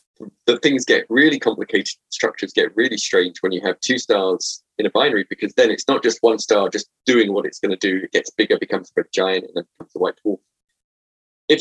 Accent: British